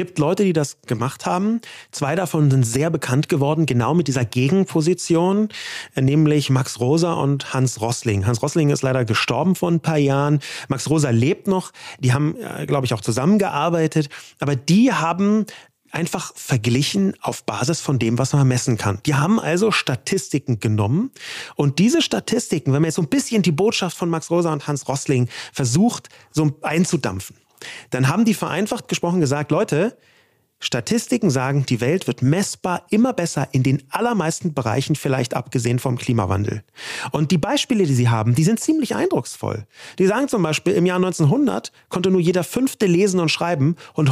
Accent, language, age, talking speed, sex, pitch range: German, German, 30-49, 175 wpm, male, 135-185 Hz